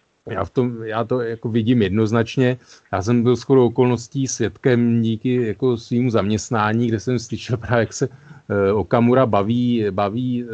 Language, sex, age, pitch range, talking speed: Slovak, male, 40-59, 110-125 Hz, 150 wpm